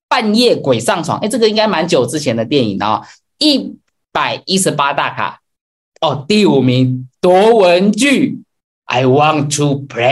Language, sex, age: Chinese, male, 20-39